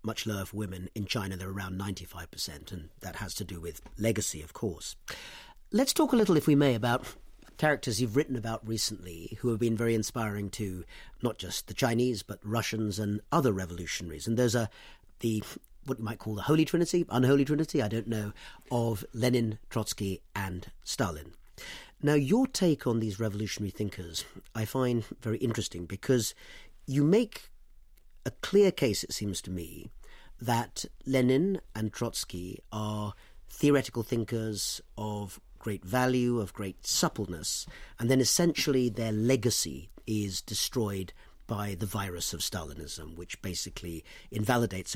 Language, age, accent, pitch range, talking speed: English, 40-59, British, 95-125 Hz, 155 wpm